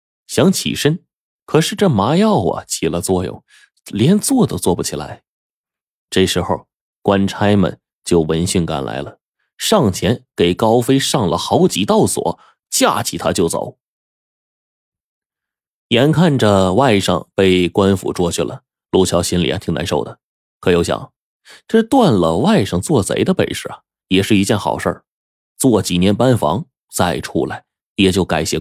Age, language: 20-39, Chinese